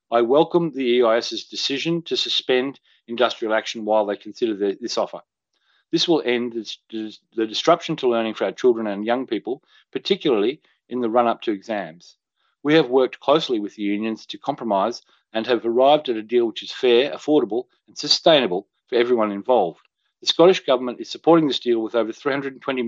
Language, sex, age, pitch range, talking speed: English, male, 40-59, 110-145 Hz, 180 wpm